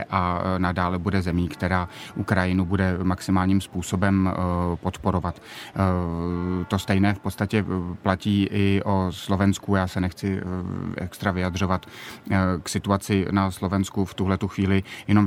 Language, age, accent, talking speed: Czech, 30-49, native, 120 wpm